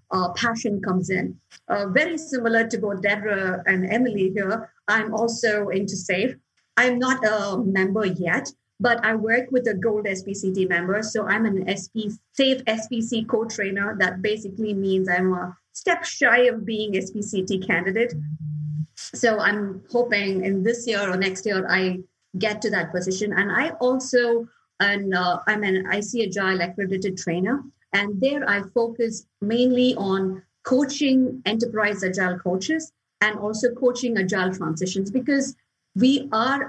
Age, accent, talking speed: 50-69, Indian, 150 wpm